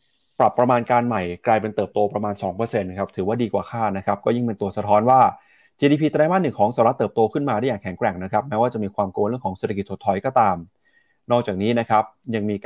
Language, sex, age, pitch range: Thai, male, 30-49, 105-135 Hz